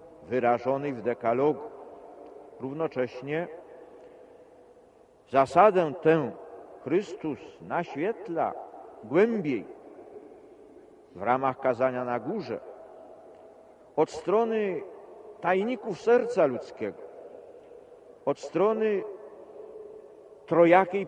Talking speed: 65 wpm